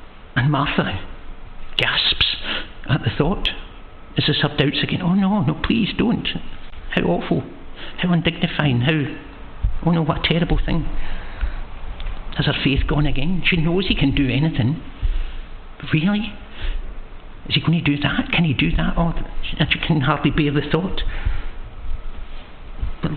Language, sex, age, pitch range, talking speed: English, male, 60-79, 120-165 Hz, 150 wpm